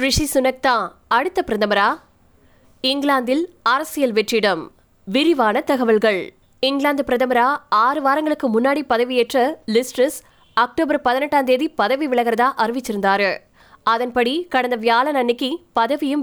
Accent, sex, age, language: native, female, 20-39, Tamil